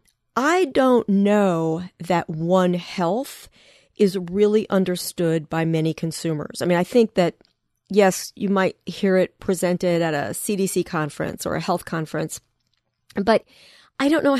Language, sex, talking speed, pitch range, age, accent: English, female, 145 wpm, 165-200 Hz, 40-59, American